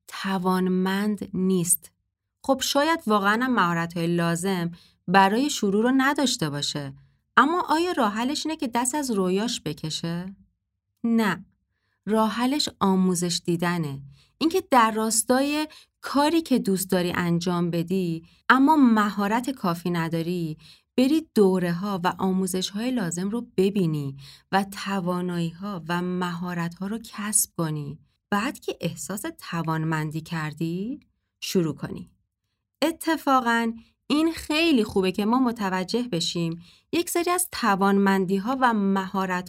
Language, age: Persian, 30-49